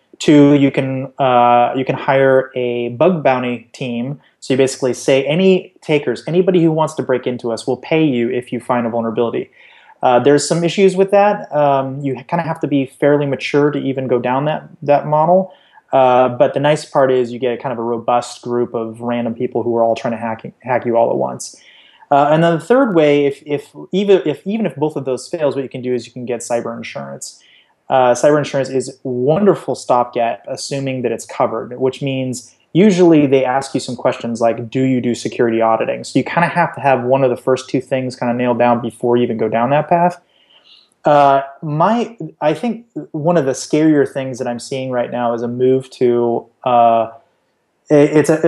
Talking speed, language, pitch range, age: 220 wpm, English, 120-150 Hz, 30-49